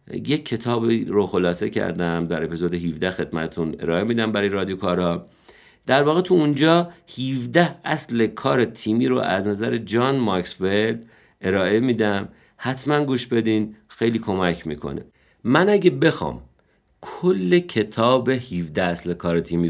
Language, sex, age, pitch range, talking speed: Persian, male, 50-69, 90-135 Hz, 135 wpm